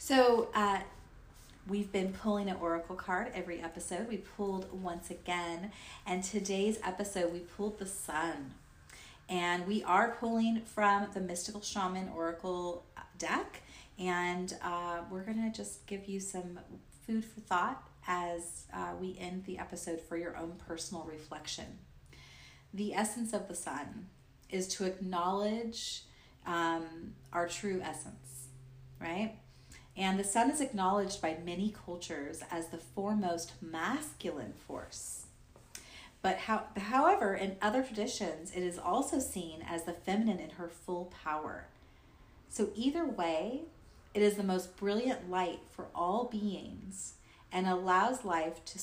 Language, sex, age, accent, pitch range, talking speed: English, female, 30-49, American, 170-205 Hz, 140 wpm